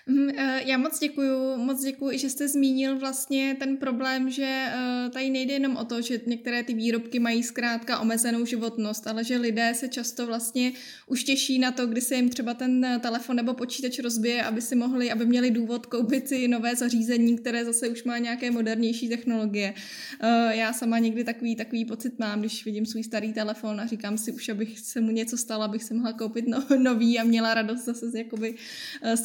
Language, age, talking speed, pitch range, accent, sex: Czech, 20-39, 195 wpm, 225-255 Hz, native, female